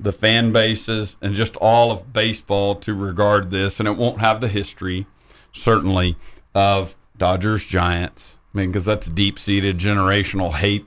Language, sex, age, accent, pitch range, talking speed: English, male, 50-69, American, 90-105 Hz, 150 wpm